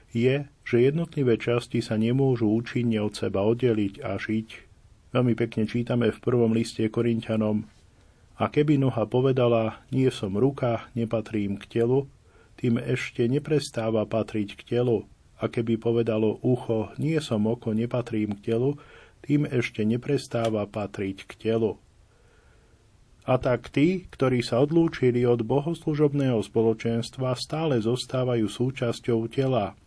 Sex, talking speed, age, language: male, 130 wpm, 40-59, Slovak